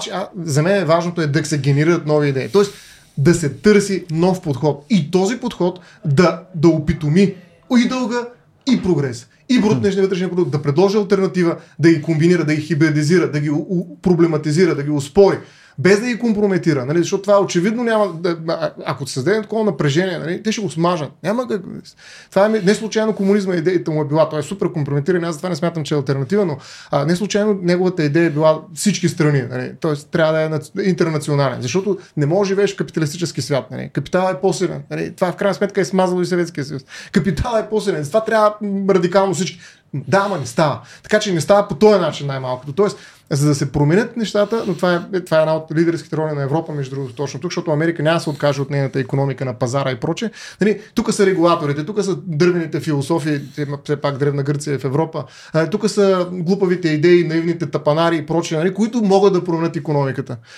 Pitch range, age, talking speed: 150-195 Hz, 30-49, 205 wpm